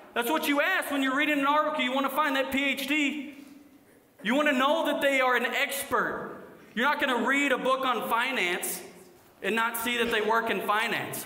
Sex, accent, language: male, American, English